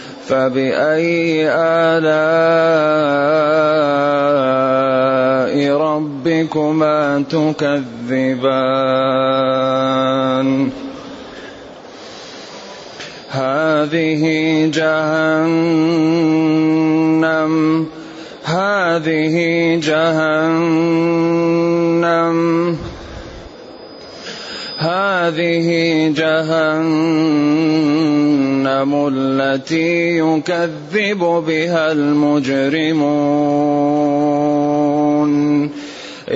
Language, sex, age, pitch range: Arabic, male, 30-49, 145-170 Hz